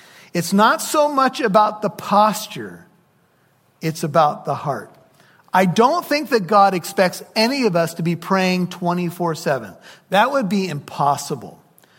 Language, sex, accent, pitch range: English, male, American, 160-215 Hz